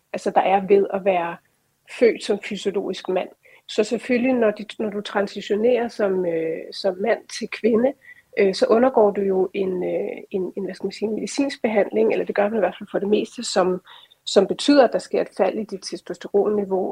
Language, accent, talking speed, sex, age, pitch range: Danish, native, 200 wpm, female, 30-49, 195-220 Hz